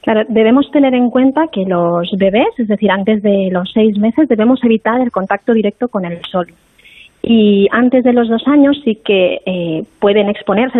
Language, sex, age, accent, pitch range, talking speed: Spanish, female, 20-39, Spanish, 190-230 Hz, 190 wpm